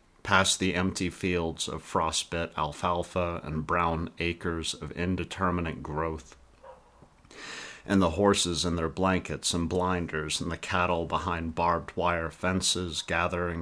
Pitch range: 85-90 Hz